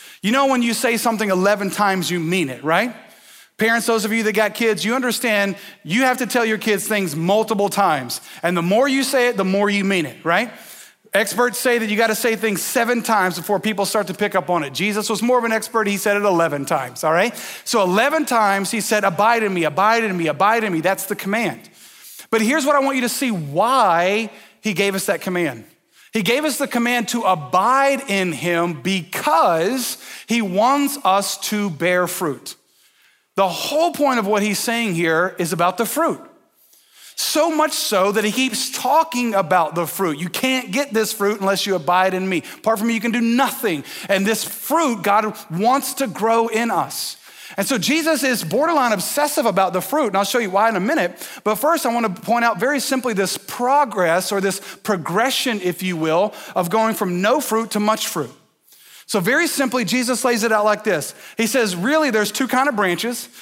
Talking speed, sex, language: 215 wpm, male, English